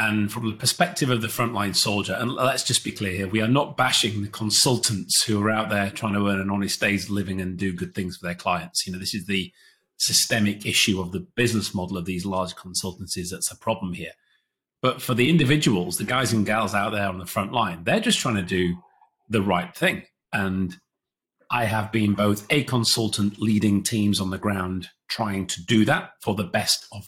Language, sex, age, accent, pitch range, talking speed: English, male, 30-49, British, 95-115 Hz, 215 wpm